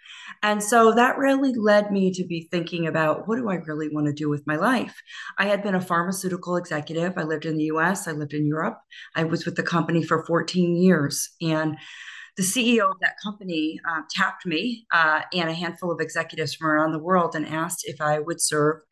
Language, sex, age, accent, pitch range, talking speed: English, female, 40-59, American, 155-185 Hz, 215 wpm